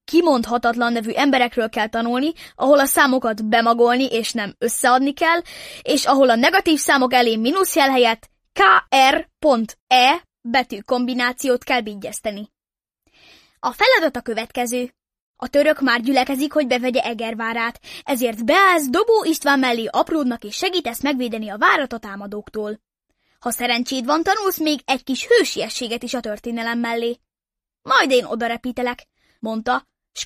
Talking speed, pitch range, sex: 130 wpm, 235-300 Hz, female